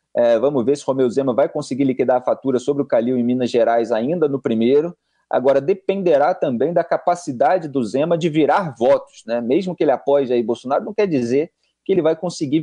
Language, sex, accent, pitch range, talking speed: Portuguese, male, Brazilian, 135-175 Hz, 205 wpm